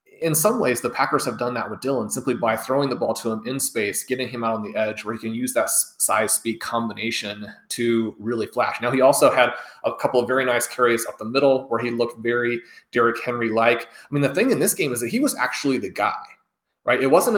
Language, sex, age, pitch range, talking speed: English, male, 30-49, 115-150 Hz, 245 wpm